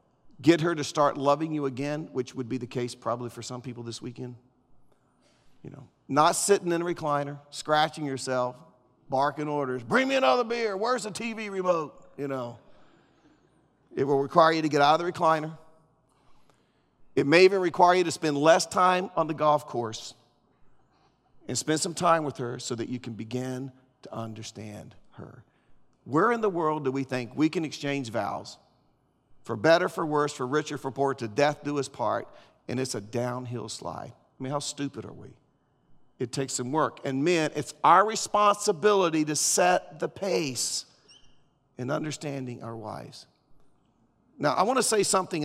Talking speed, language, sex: 175 wpm, English, male